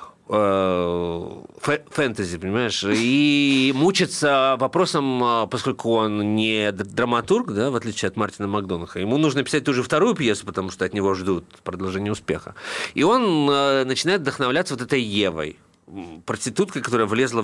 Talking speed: 140 wpm